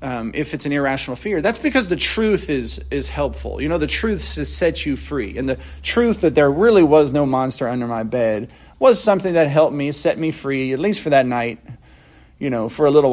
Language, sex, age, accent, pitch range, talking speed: English, male, 40-59, American, 130-180 Hz, 230 wpm